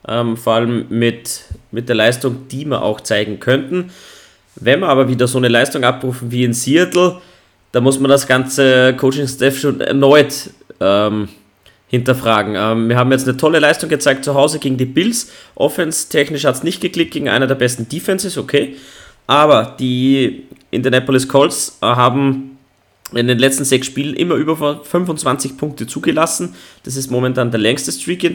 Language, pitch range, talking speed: German, 125-145 Hz, 165 wpm